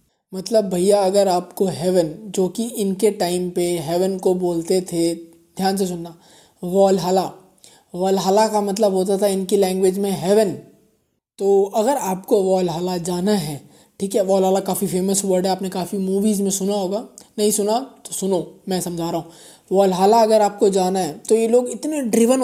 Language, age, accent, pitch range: Hindi, 20-39, native, 195-235 Hz